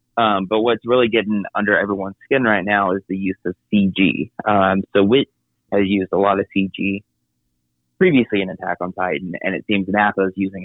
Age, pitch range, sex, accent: 30-49, 90-105 Hz, male, American